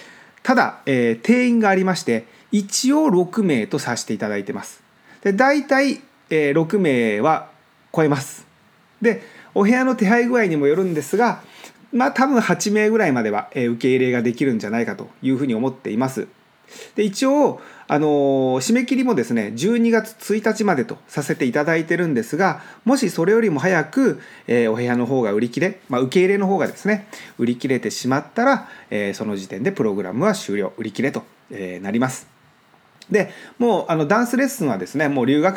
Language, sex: Japanese, male